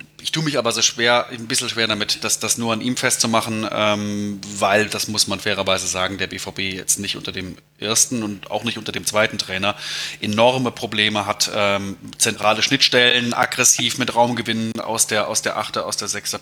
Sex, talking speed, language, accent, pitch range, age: male, 195 wpm, German, German, 100-120 Hz, 20-39